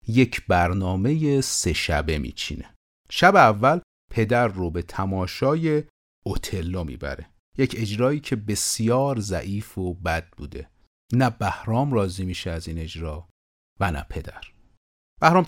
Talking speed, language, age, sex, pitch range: 125 wpm, Persian, 40-59, male, 90-120 Hz